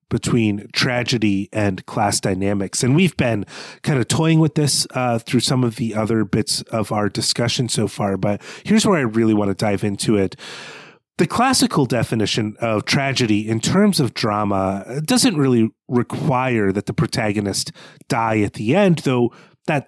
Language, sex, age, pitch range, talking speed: English, male, 30-49, 110-145 Hz, 170 wpm